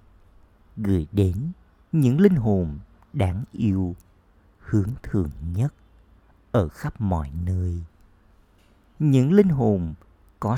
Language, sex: Vietnamese, male